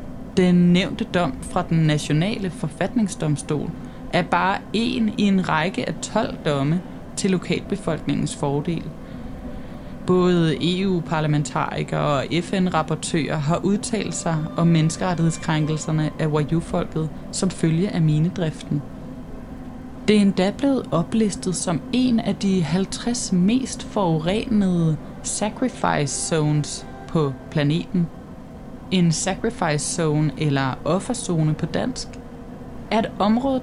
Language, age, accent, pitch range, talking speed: Danish, 20-39, native, 155-210 Hz, 105 wpm